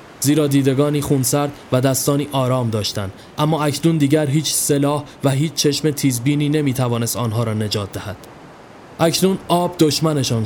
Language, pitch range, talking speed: Persian, 125-150 Hz, 140 wpm